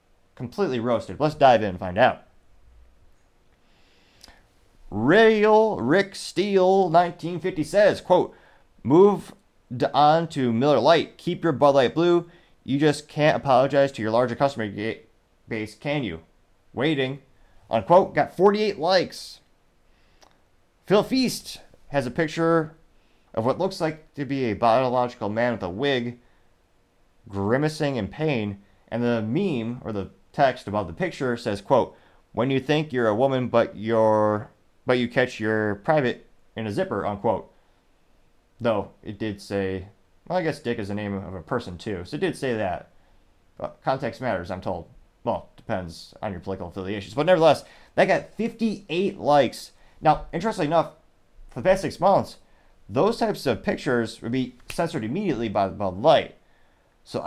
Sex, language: male, English